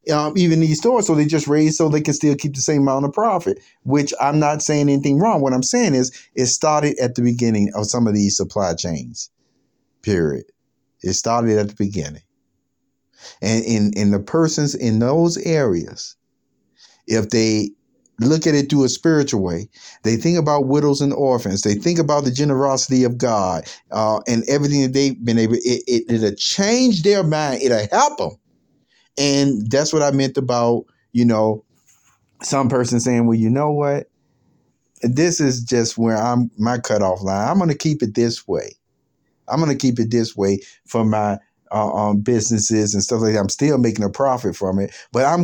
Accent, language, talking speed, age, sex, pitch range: American, English, 190 wpm, 50-69, male, 105-145 Hz